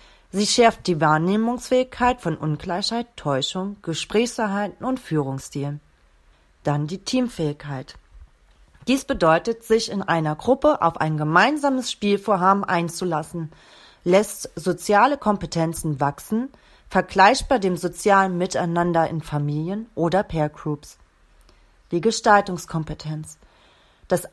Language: German